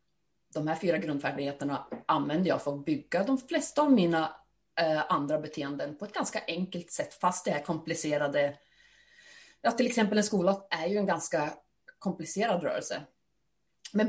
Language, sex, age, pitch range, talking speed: Swedish, female, 30-49, 160-215 Hz, 160 wpm